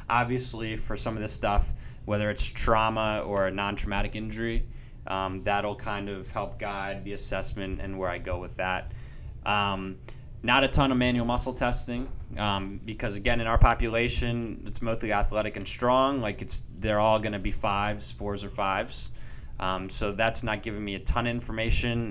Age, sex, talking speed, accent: 20-39, male, 180 wpm, American